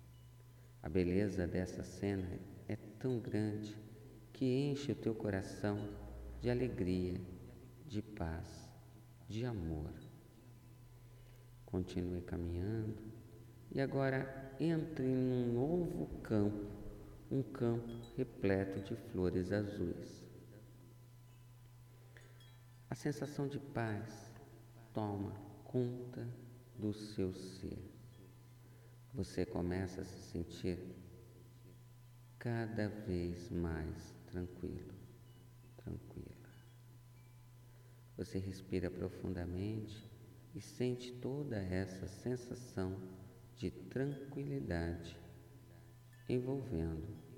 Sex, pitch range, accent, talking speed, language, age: male, 95-120 Hz, Brazilian, 80 wpm, Portuguese, 50-69